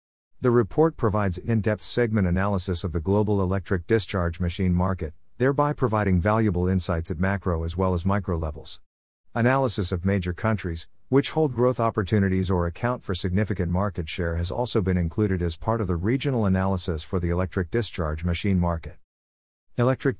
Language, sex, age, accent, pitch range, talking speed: English, male, 50-69, American, 85-115 Hz, 165 wpm